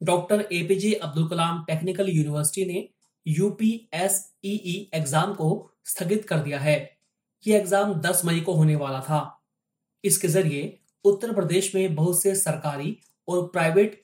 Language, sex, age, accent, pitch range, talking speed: Hindi, male, 20-39, native, 160-200 Hz, 135 wpm